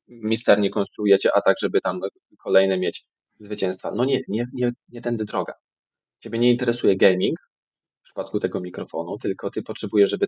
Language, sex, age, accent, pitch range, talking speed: Polish, male, 20-39, native, 110-155 Hz, 170 wpm